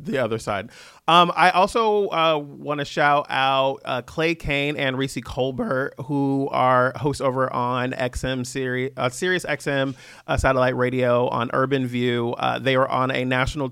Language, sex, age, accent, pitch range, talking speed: English, male, 30-49, American, 120-145 Hz, 170 wpm